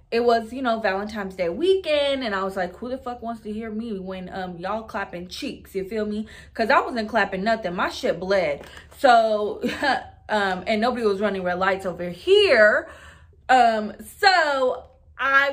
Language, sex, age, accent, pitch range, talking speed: English, female, 20-39, American, 180-240 Hz, 180 wpm